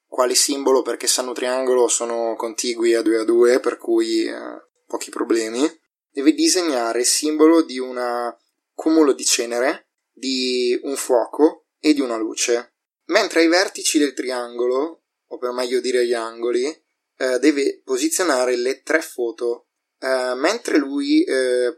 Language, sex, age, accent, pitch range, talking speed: Italian, male, 20-39, native, 120-185 Hz, 145 wpm